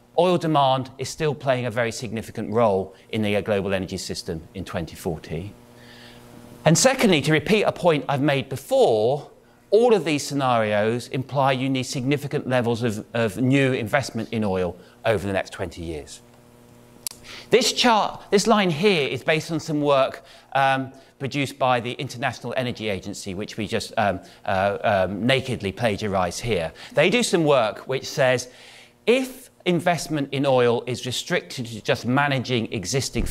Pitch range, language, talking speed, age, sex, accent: 115-145 Hz, English, 155 wpm, 40-59, male, British